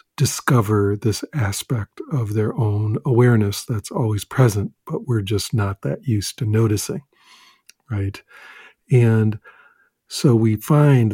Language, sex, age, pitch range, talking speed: English, male, 50-69, 105-130 Hz, 125 wpm